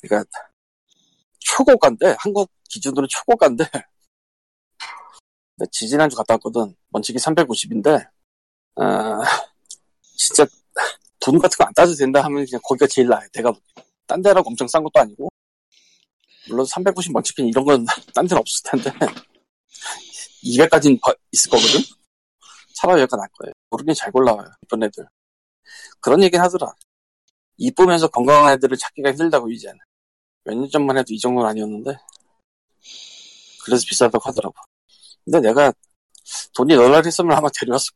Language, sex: Korean, male